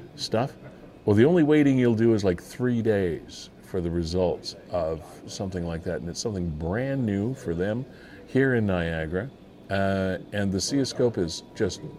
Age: 50-69